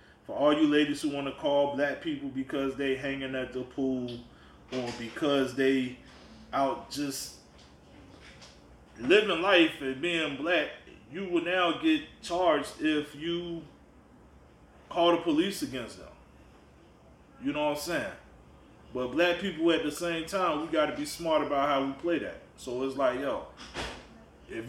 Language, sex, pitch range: English, male, 120-155 Hz